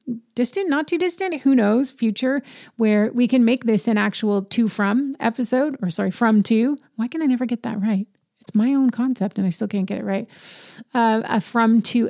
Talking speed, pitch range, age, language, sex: 215 wpm, 190-230 Hz, 30-49, English, female